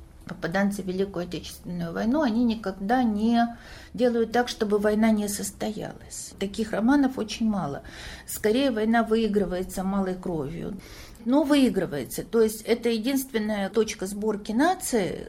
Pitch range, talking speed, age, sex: 200-245 Hz, 125 wpm, 50-69, female